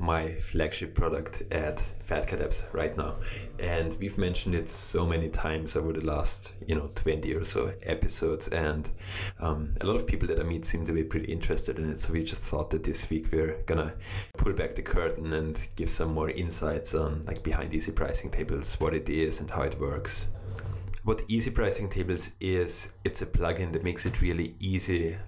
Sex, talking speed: male, 195 wpm